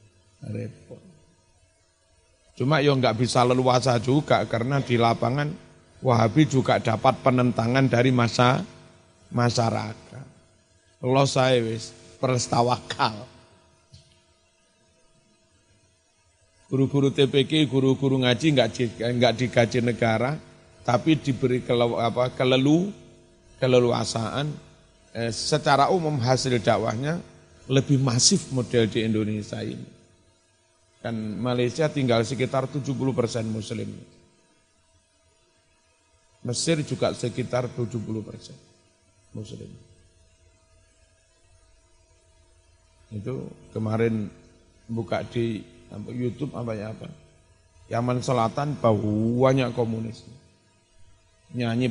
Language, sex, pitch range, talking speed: Indonesian, male, 105-130 Hz, 75 wpm